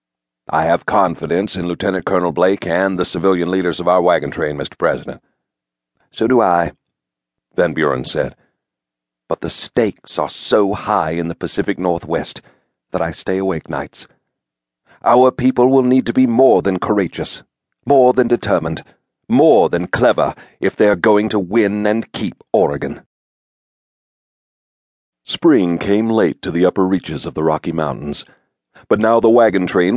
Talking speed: 155 wpm